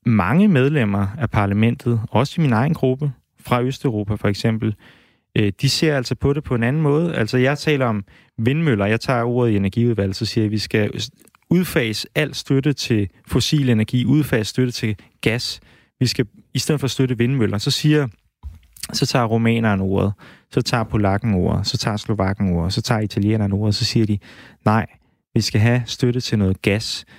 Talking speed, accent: 190 wpm, native